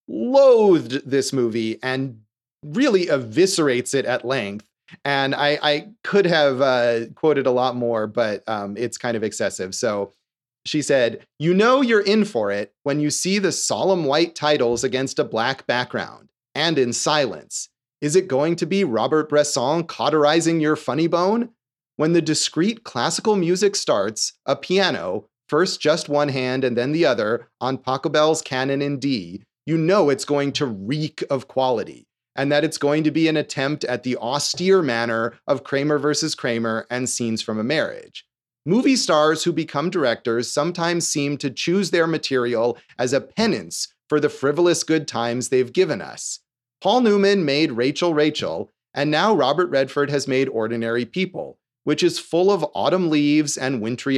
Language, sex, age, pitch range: English, male, 30-49, 130-170 Hz